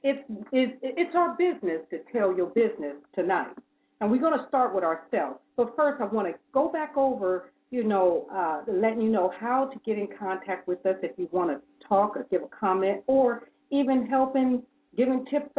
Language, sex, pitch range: English, female, 180-250 Hz